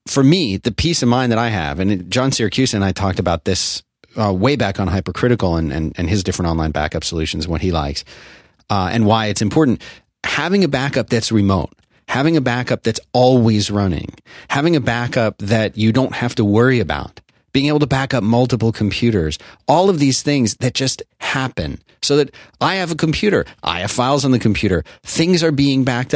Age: 40-59